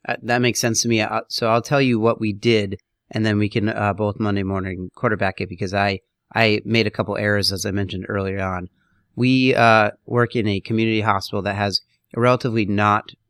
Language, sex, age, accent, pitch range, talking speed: English, male, 30-49, American, 100-120 Hz, 210 wpm